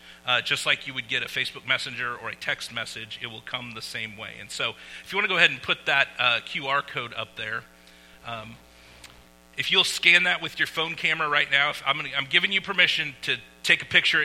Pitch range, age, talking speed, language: 110-150 Hz, 40-59, 240 wpm, English